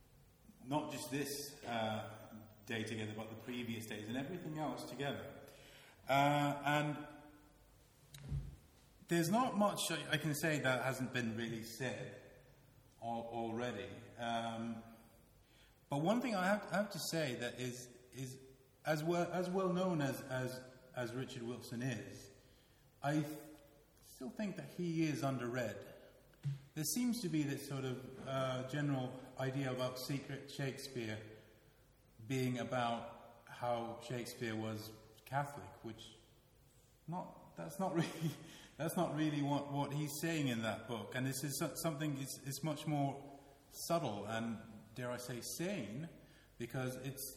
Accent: British